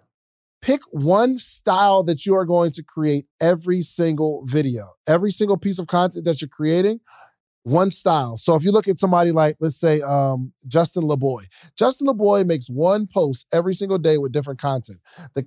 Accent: American